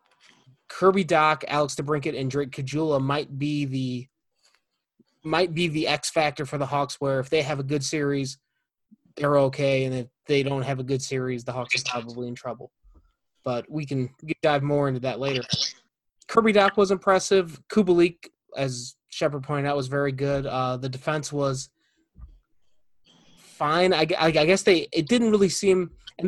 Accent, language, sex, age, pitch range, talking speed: American, English, male, 20-39, 135-160 Hz, 175 wpm